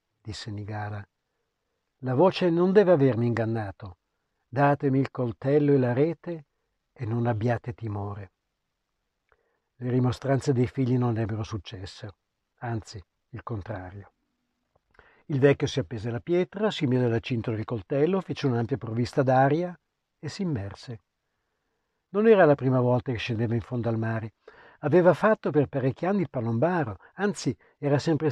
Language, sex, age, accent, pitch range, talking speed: Italian, male, 60-79, native, 115-165 Hz, 145 wpm